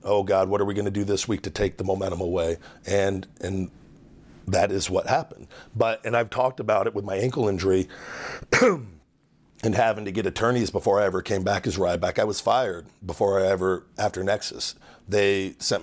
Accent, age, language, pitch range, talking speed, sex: American, 40-59, English, 95-110 Hz, 205 wpm, male